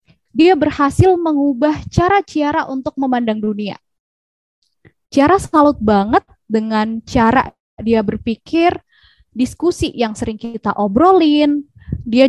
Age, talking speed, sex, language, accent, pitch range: 20-39, 105 wpm, female, Indonesian, native, 235-310 Hz